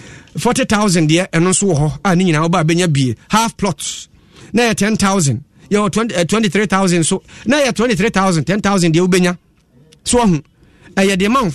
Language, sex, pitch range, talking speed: English, male, 155-205 Hz, 165 wpm